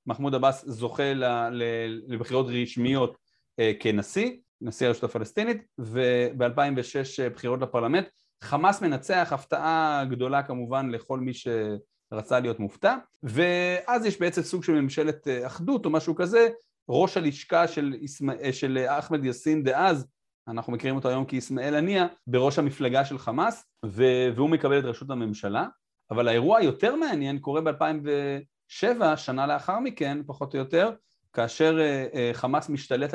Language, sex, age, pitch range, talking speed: Hebrew, male, 40-59, 120-155 Hz, 130 wpm